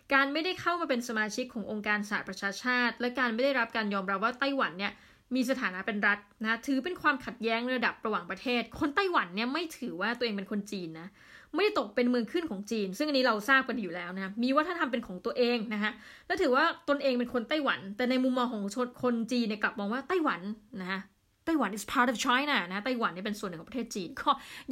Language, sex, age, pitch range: Thai, female, 20-39, 210-270 Hz